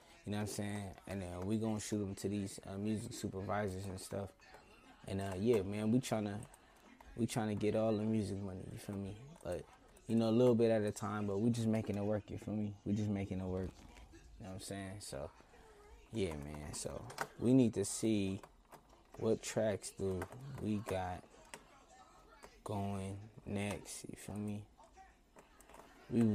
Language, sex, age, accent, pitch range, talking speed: English, male, 20-39, American, 95-110 Hz, 190 wpm